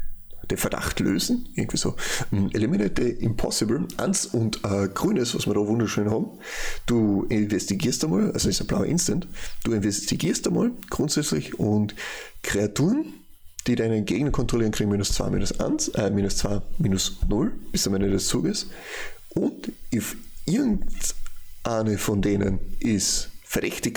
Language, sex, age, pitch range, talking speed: German, male, 30-49, 100-115 Hz, 140 wpm